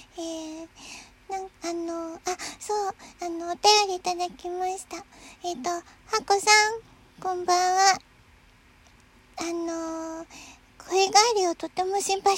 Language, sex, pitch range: Japanese, male, 310-385 Hz